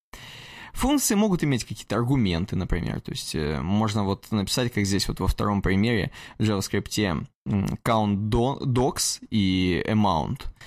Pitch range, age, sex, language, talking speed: 105-150 Hz, 20-39, male, Russian, 130 wpm